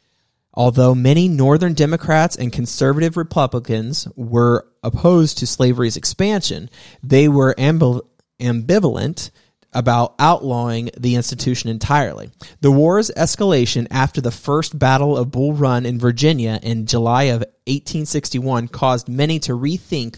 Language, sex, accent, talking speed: English, male, American, 120 wpm